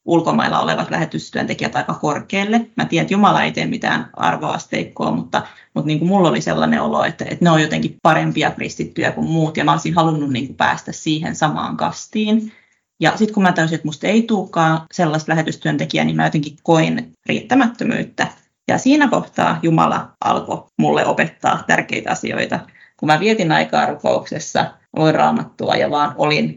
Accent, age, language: native, 30-49, Finnish